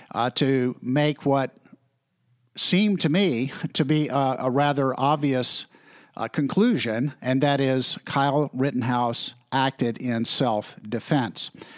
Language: English